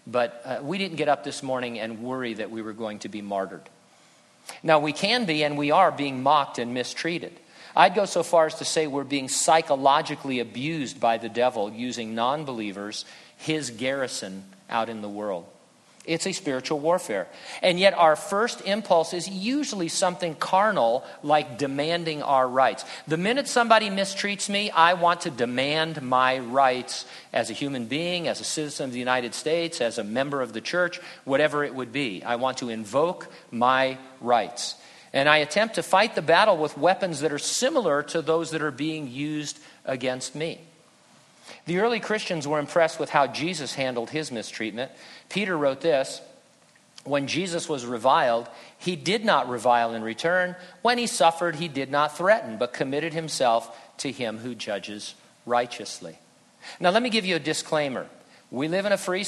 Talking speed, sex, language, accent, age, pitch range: 180 wpm, male, English, American, 50-69, 130-170 Hz